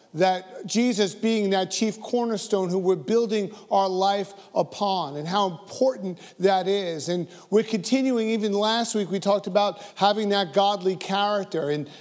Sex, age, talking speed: male, 40-59, 155 wpm